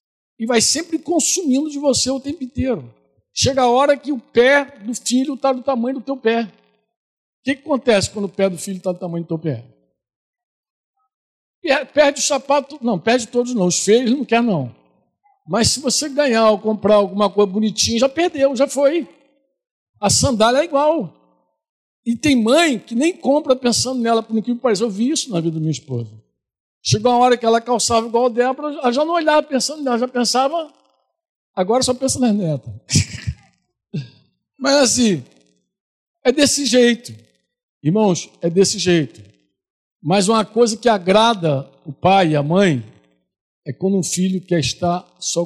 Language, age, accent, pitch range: Portuguese, 60-79, Brazilian, 175-265 Hz